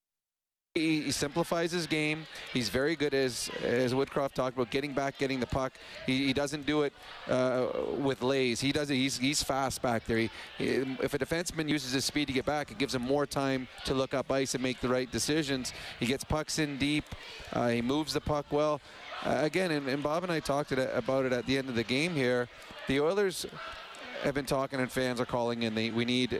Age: 30-49